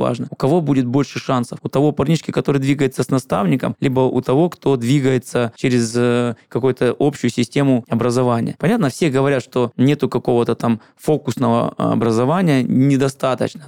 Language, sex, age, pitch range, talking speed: Russian, male, 20-39, 125-145 Hz, 145 wpm